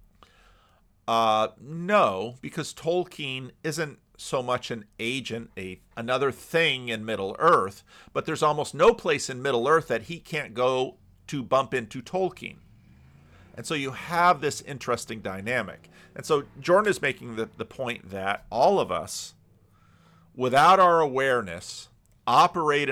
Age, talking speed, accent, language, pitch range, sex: 50-69, 140 wpm, American, English, 105-140 Hz, male